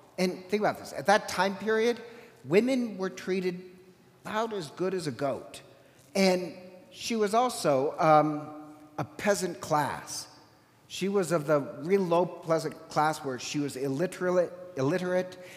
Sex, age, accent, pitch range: male, 50-69, American, 145-190 Hz